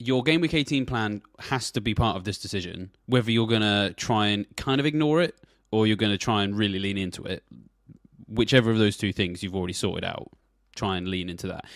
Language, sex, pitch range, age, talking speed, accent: English, male, 95-115 Hz, 20-39, 235 wpm, British